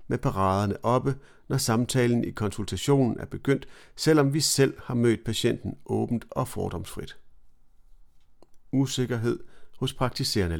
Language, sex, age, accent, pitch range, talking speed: Danish, male, 40-59, native, 100-135 Hz, 120 wpm